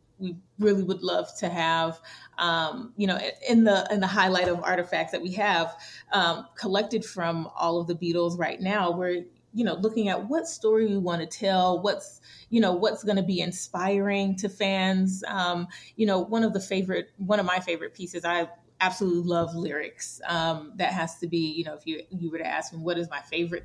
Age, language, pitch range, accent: 30-49, English, 170-200 Hz, American